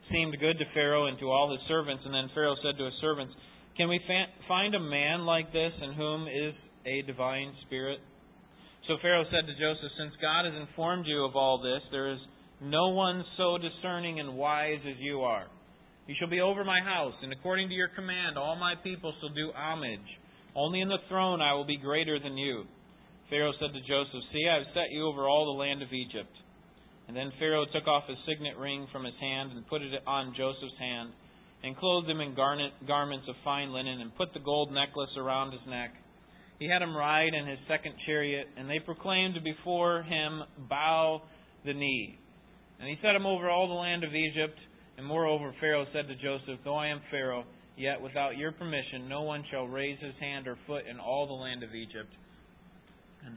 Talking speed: 205 wpm